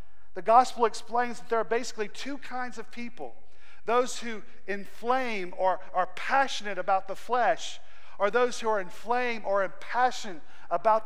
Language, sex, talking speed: English, male, 150 wpm